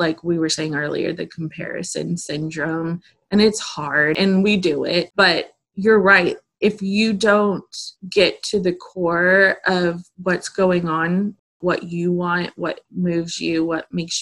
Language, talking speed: English, 155 wpm